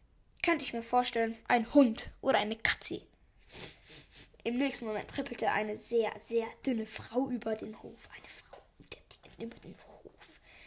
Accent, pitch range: German, 230-290 Hz